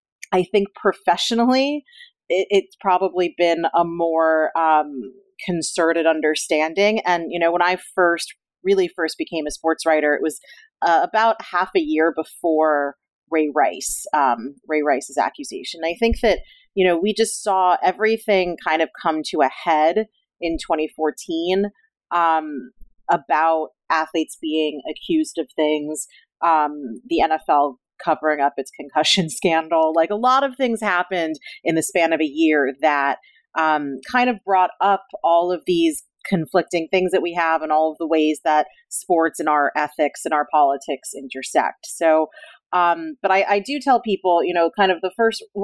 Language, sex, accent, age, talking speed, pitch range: English, female, American, 30-49, 165 wpm, 155-200 Hz